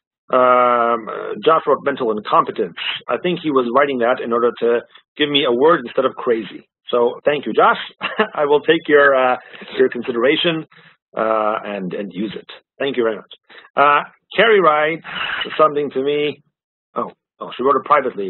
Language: English